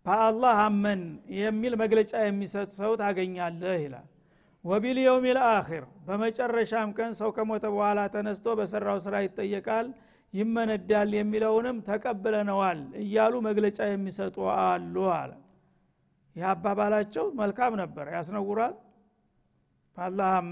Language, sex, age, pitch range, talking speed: Amharic, male, 50-69, 180-225 Hz, 95 wpm